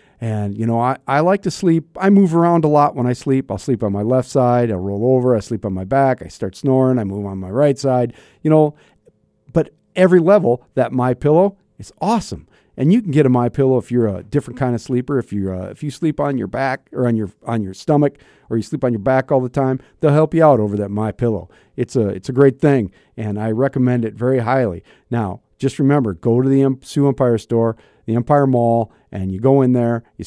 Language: English